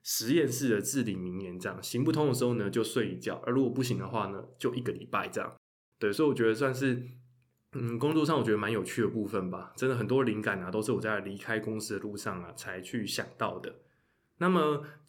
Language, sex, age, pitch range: Chinese, male, 20-39, 105-130 Hz